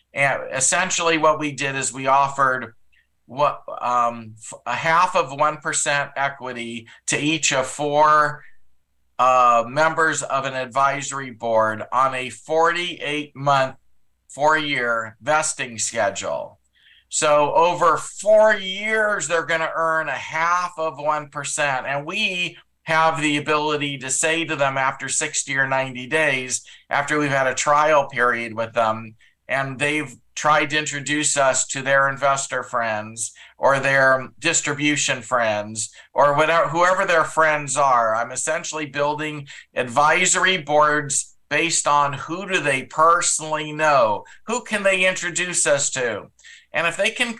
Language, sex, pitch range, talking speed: English, male, 135-160 Hz, 135 wpm